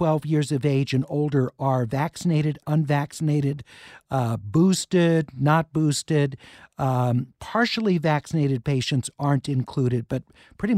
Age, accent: 50-69, American